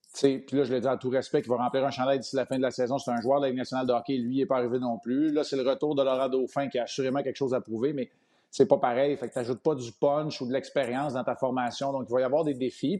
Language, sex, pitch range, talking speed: French, male, 125-140 Hz, 340 wpm